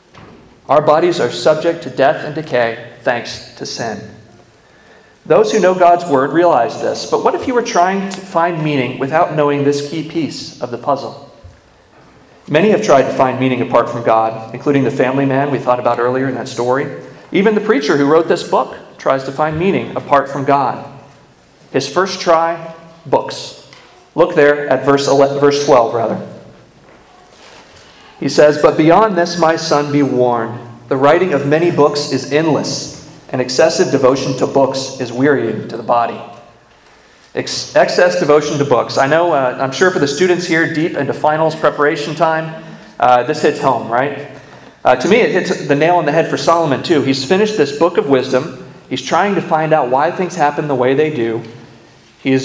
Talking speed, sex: 185 wpm, male